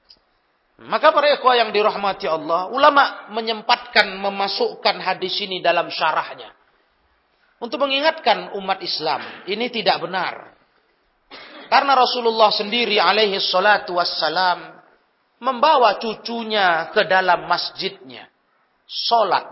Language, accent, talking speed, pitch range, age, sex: Indonesian, native, 100 wpm, 180-240 Hz, 40-59, male